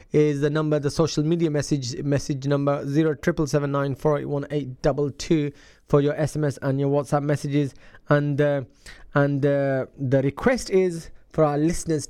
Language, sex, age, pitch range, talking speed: English, male, 20-39, 145-165 Hz, 135 wpm